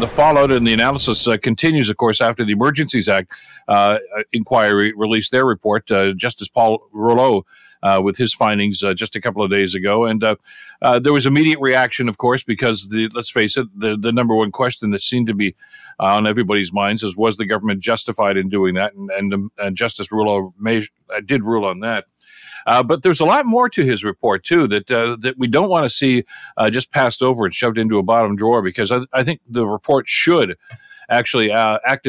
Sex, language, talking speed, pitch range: male, English, 220 wpm, 105-130 Hz